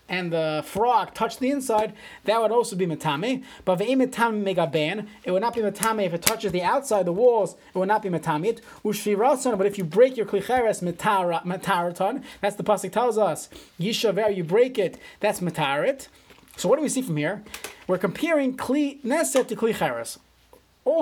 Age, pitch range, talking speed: 30-49, 185-235 Hz, 170 wpm